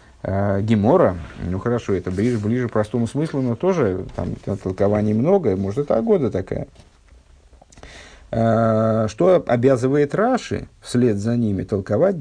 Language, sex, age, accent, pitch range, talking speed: Russian, male, 50-69, native, 100-135 Hz, 120 wpm